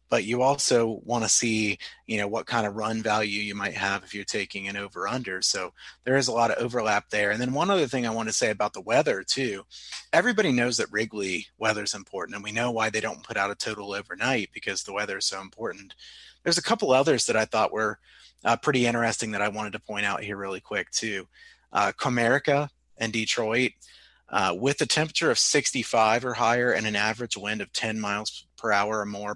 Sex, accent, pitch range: male, American, 105-120 Hz